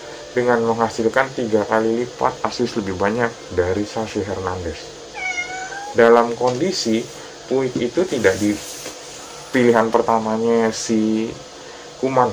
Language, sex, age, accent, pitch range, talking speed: Indonesian, male, 20-39, native, 110-180 Hz, 100 wpm